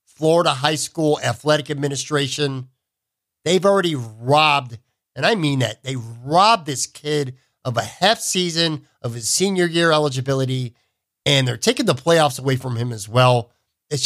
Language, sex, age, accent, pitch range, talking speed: English, male, 50-69, American, 130-155 Hz, 155 wpm